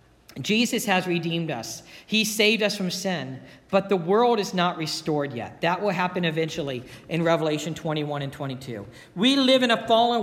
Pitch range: 185-255 Hz